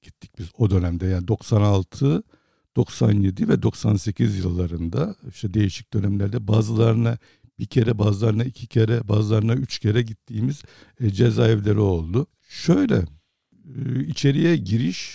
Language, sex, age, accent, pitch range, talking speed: Turkish, male, 60-79, native, 105-130 Hz, 110 wpm